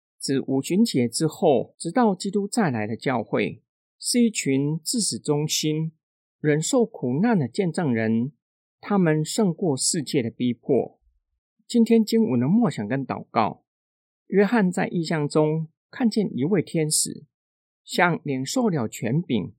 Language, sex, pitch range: Chinese, male, 125-205 Hz